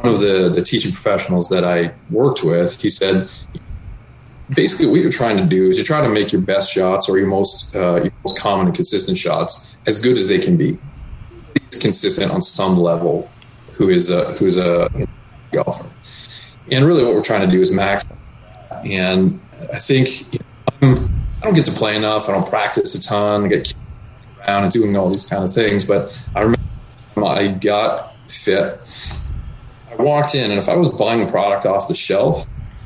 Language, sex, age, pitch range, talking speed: English, male, 30-49, 95-125 Hz, 195 wpm